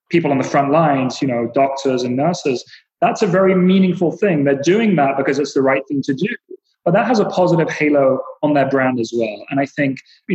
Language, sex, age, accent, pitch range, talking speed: English, male, 30-49, British, 135-190 Hz, 230 wpm